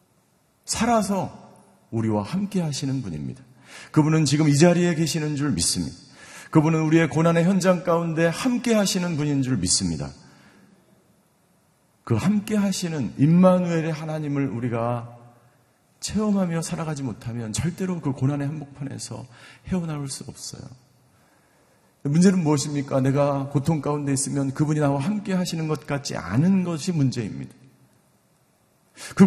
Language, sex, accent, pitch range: Korean, male, native, 120-175 Hz